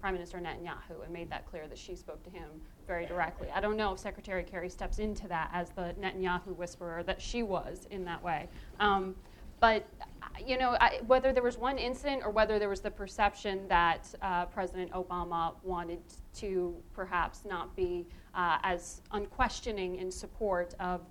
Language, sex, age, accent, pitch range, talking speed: English, female, 30-49, American, 180-220 Hz, 180 wpm